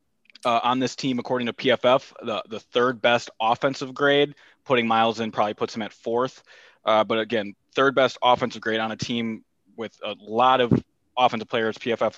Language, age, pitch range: English, 20-39, 110-140 Hz